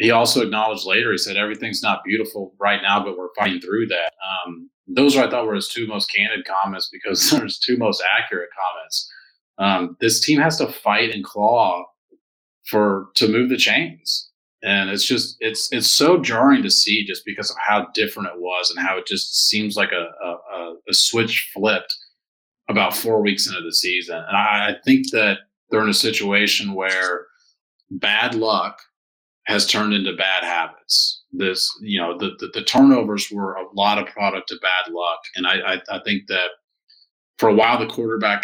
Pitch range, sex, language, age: 95-135 Hz, male, English, 30-49